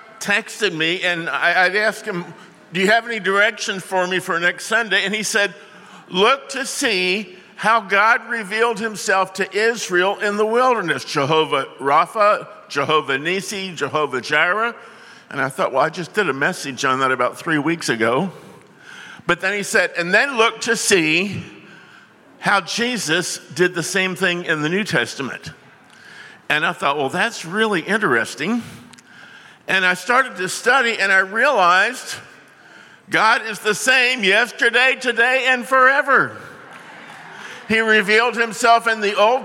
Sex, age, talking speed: male, 50-69, 150 wpm